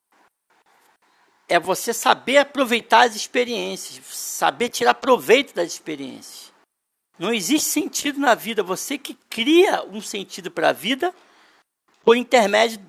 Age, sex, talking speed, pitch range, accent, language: 60-79, male, 120 wpm, 215-305 Hz, Brazilian, Portuguese